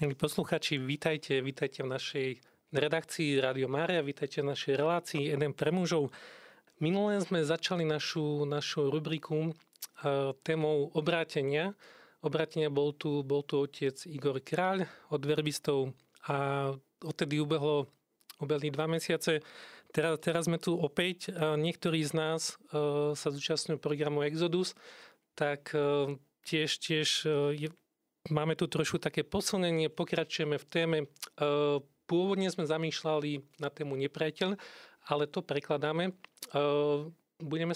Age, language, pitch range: 40-59, Slovak, 145-165 Hz